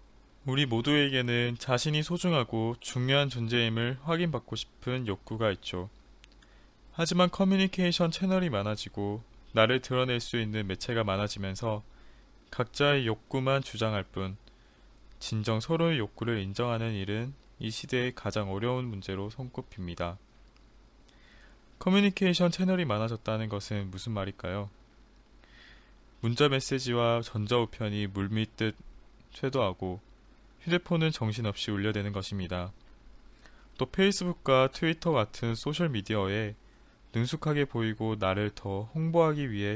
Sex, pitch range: male, 105-140 Hz